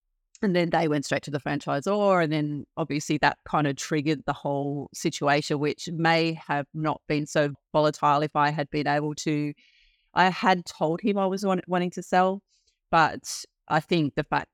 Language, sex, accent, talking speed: English, female, Australian, 190 wpm